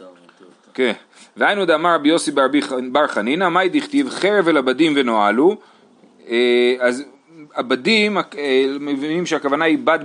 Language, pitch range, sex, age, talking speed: Hebrew, 130-205 Hz, male, 30-49, 135 wpm